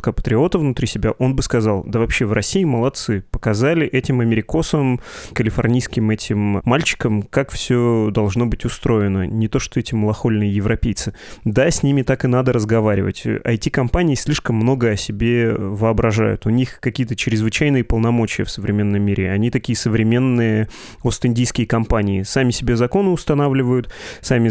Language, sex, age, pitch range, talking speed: Russian, male, 20-39, 110-125 Hz, 145 wpm